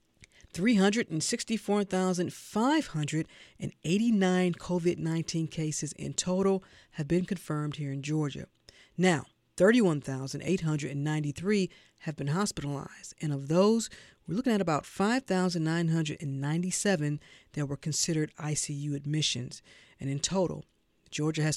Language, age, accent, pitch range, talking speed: English, 40-59, American, 150-195 Hz, 95 wpm